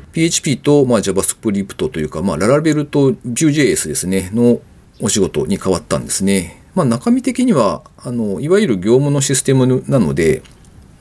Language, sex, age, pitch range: Japanese, male, 40-59, 100-150 Hz